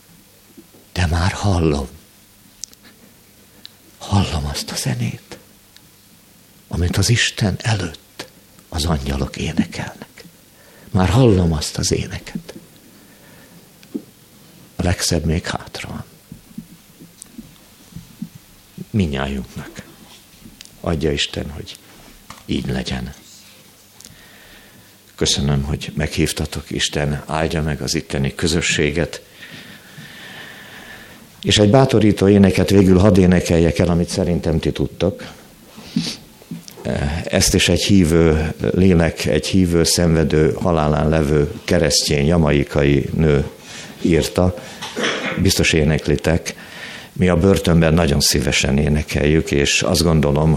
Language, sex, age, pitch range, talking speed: Hungarian, male, 50-69, 75-95 Hz, 90 wpm